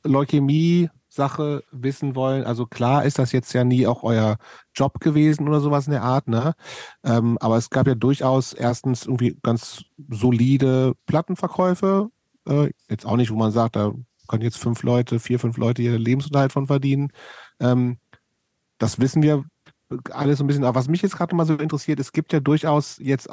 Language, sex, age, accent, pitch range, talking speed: German, male, 40-59, German, 115-140 Hz, 185 wpm